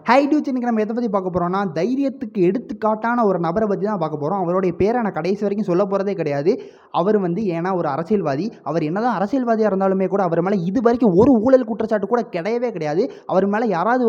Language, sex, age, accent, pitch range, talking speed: Tamil, male, 20-39, native, 175-225 Hz, 190 wpm